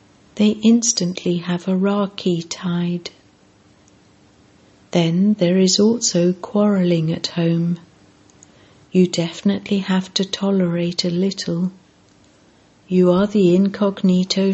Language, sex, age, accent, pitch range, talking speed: English, female, 60-79, British, 170-195 Hz, 100 wpm